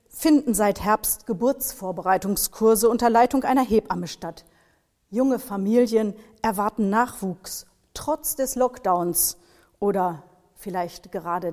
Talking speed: 100 wpm